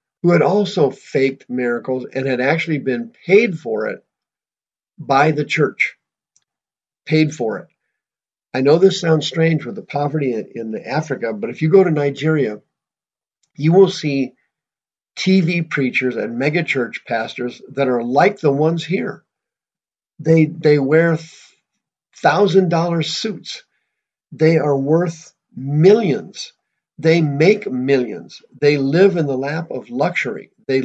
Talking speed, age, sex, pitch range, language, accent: 130 wpm, 50-69, male, 130-175 Hz, English, American